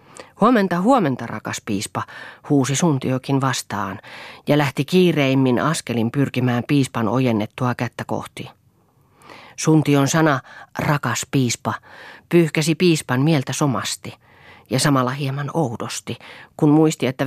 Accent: native